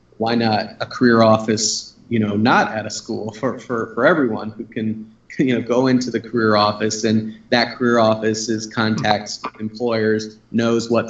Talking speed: 180 wpm